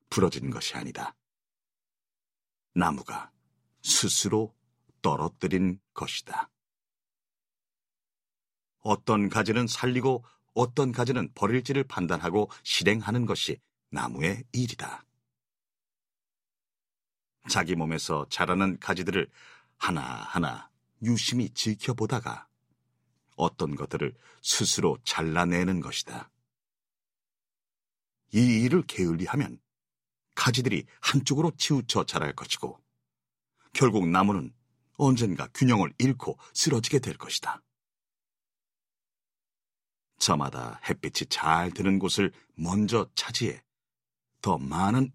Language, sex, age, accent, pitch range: Korean, male, 40-59, native, 85-125 Hz